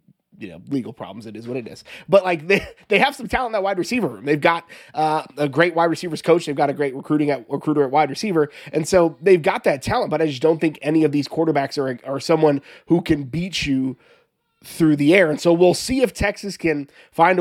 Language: English